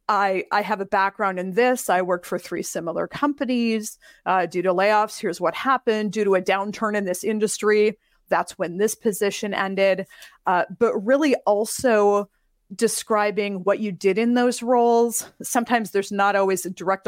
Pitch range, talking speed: 190-230 Hz, 170 wpm